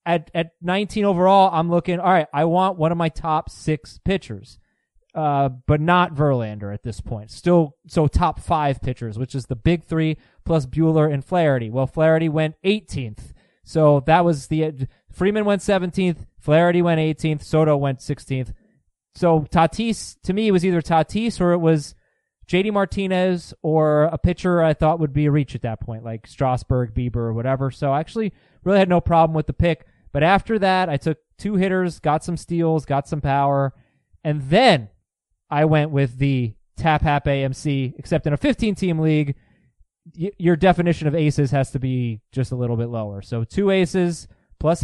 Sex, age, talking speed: male, 20-39, 185 wpm